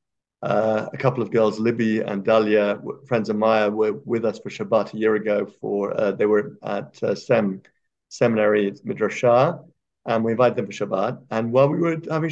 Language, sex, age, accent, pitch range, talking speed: English, male, 50-69, British, 110-130 Hz, 195 wpm